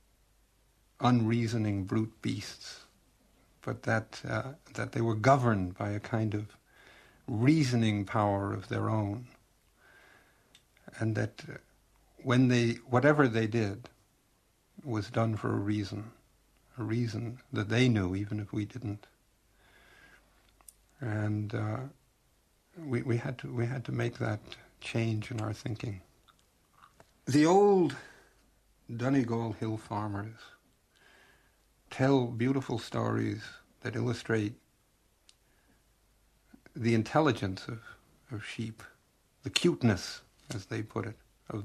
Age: 60-79